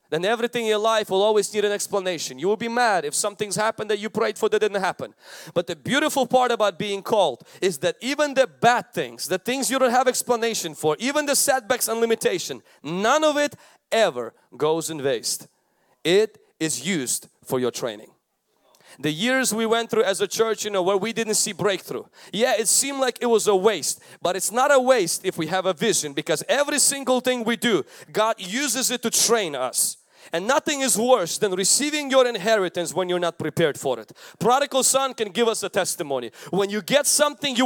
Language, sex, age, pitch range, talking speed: English, male, 30-49, 195-270 Hz, 210 wpm